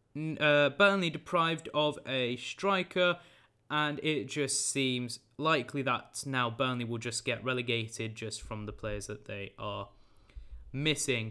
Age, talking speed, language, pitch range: 20-39, 140 wpm, English, 135-180 Hz